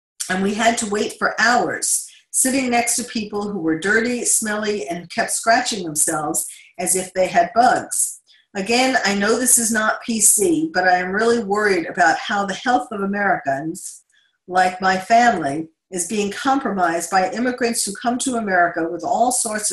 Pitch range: 180-240 Hz